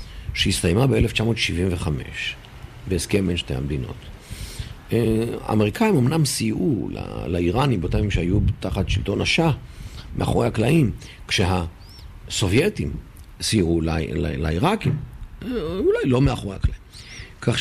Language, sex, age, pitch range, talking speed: Hebrew, male, 50-69, 95-125 Hz, 100 wpm